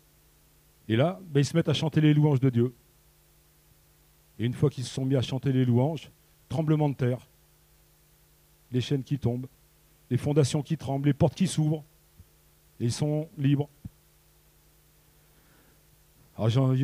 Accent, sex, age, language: French, male, 40-59, French